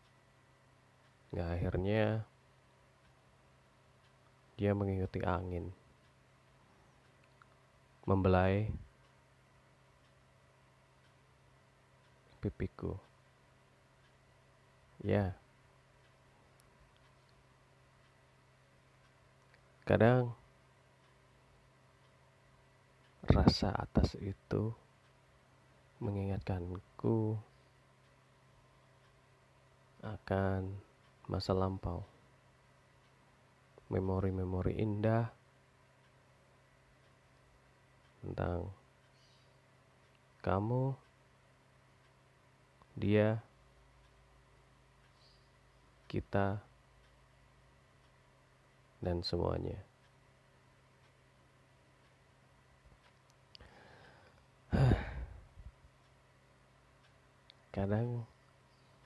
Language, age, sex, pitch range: Indonesian, 30-49, male, 95-130 Hz